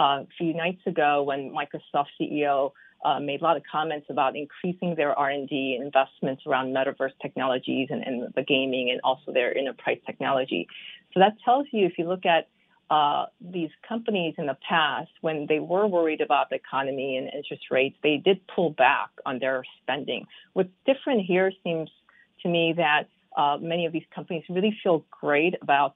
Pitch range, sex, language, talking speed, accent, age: 145-185 Hz, female, English, 180 wpm, American, 40-59